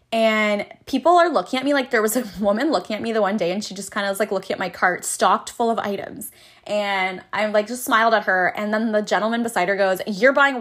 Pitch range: 185-245 Hz